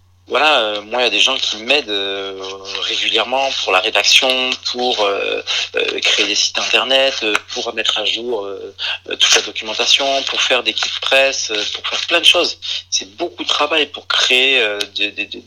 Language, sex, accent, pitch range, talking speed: French, male, French, 100-130 Hz, 185 wpm